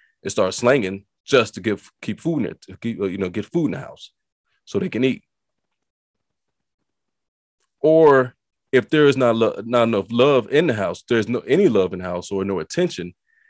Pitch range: 90-120 Hz